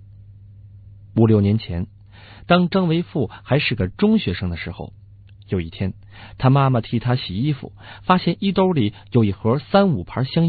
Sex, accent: male, native